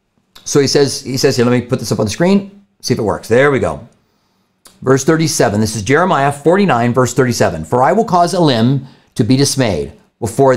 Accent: American